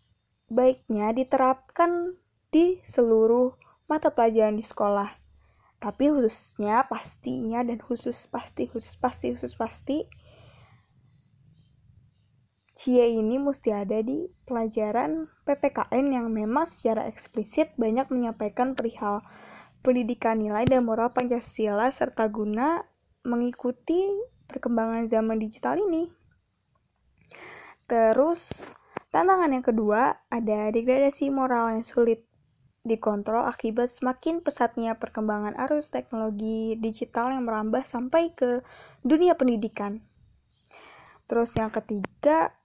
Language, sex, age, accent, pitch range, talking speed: Indonesian, female, 20-39, native, 220-265 Hz, 100 wpm